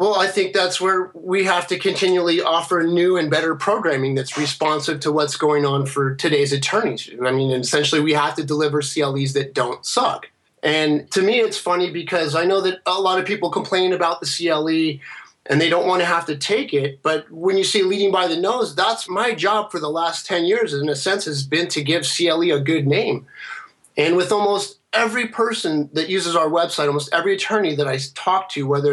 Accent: American